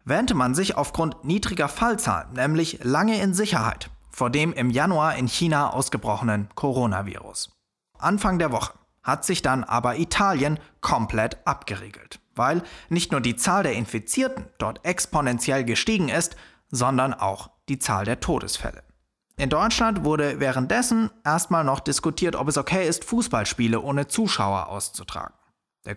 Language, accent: German, German